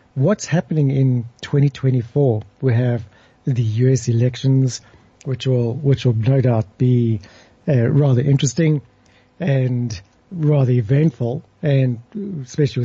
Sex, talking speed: male, 110 wpm